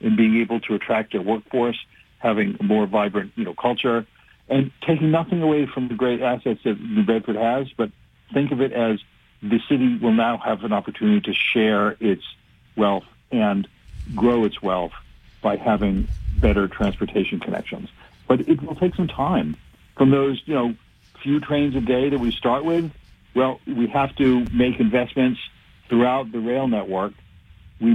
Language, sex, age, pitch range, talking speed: English, male, 50-69, 100-130 Hz, 170 wpm